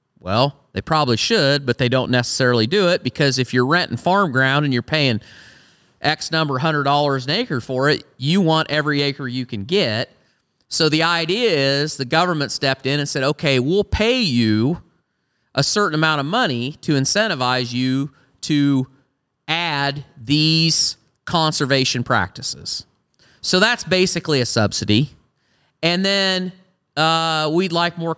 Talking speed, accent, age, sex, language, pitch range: 155 wpm, American, 40-59, male, English, 130-170 Hz